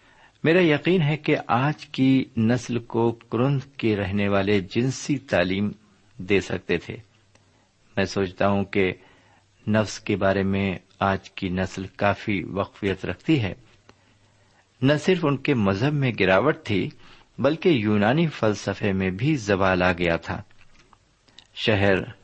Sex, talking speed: male, 135 wpm